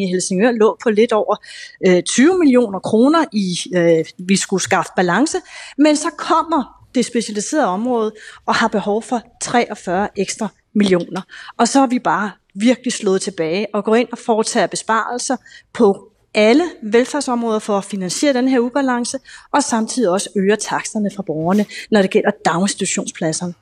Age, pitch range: 30-49, 195-250 Hz